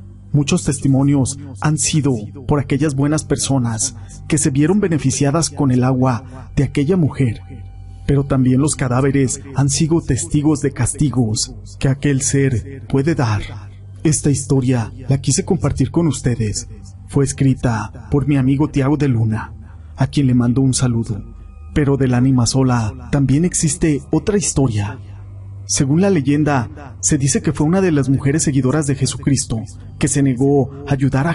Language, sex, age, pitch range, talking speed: Spanish, male, 40-59, 115-145 Hz, 155 wpm